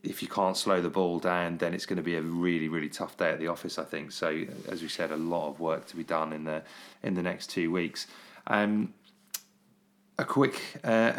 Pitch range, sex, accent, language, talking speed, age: 85-105 Hz, male, British, English, 235 wpm, 30-49